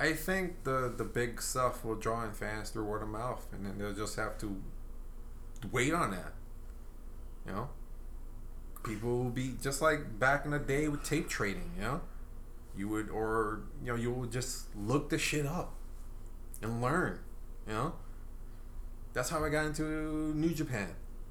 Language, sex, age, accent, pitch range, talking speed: English, male, 20-39, American, 110-150 Hz, 175 wpm